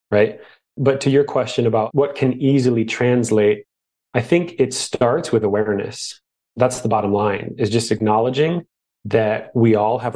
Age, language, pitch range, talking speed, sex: 30-49, English, 105-125 Hz, 160 wpm, male